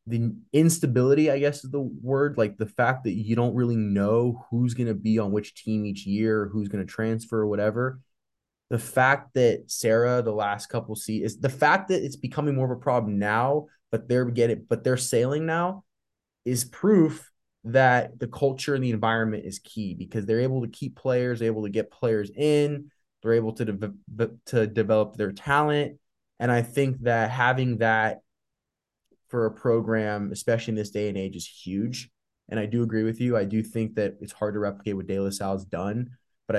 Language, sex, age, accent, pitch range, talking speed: English, male, 20-39, American, 110-125 Hz, 205 wpm